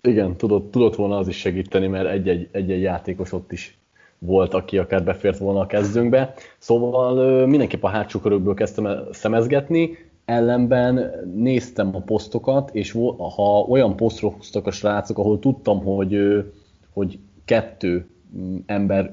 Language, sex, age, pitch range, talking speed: Hungarian, male, 30-49, 95-115 Hz, 140 wpm